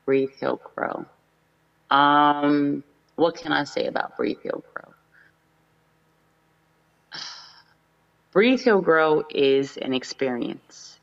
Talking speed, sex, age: 100 wpm, female, 30-49